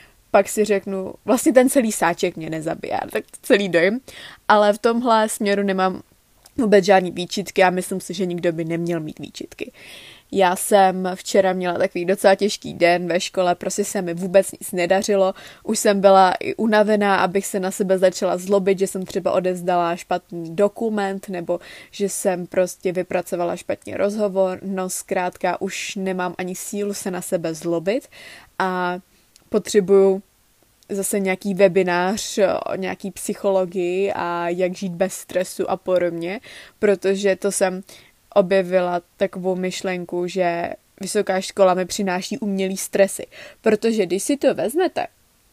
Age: 20-39